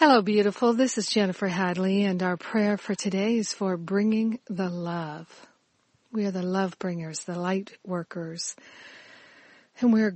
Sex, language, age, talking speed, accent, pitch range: female, English, 50-69, 155 wpm, American, 180-205 Hz